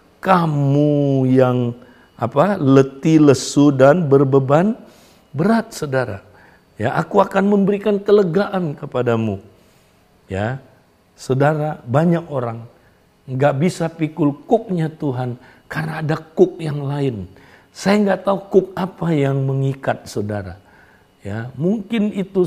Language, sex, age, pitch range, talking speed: Indonesian, male, 50-69, 115-160 Hz, 105 wpm